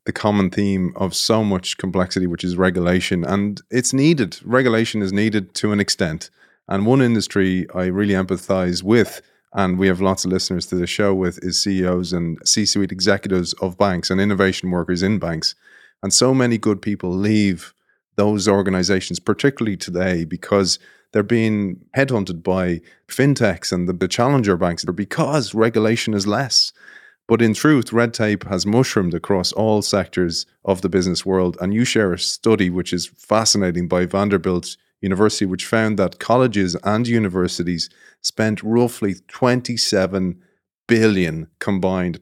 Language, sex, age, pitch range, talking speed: English, male, 30-49, 90-110 Hz, 155 wpm